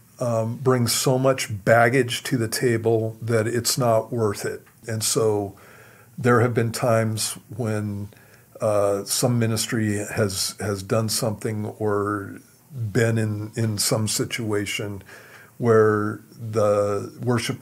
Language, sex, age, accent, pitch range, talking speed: English, male, 50-69, American, 105-125 Hz, 125 wpm